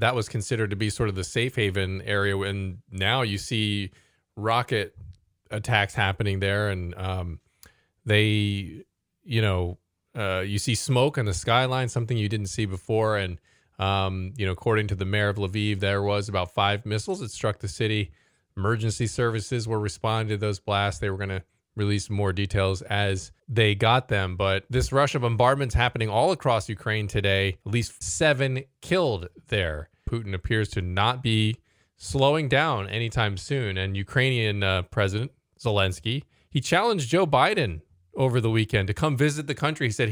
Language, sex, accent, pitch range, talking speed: English, male, American, 100-120 Hz, 175 wpm